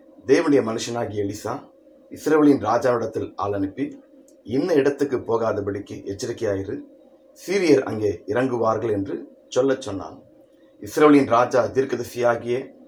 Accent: native